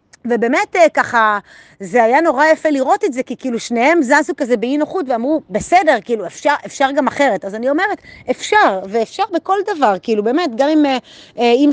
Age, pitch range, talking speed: 30-49, 230-315 Hz, 180 wpm